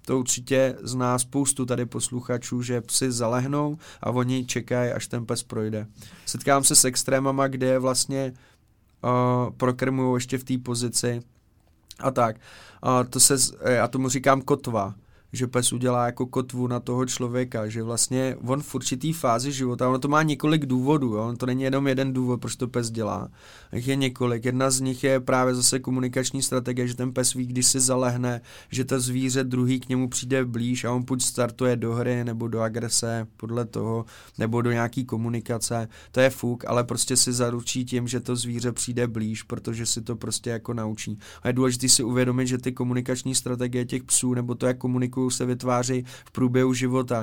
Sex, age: male, 20-39